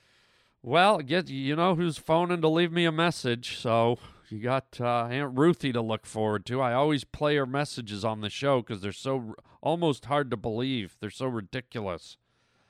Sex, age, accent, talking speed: male, 40-59, American, 185 wpm